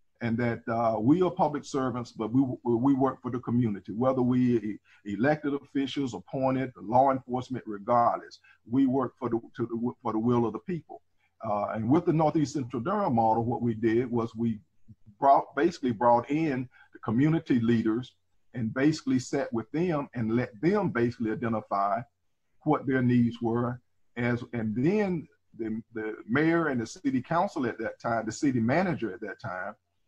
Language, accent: English, American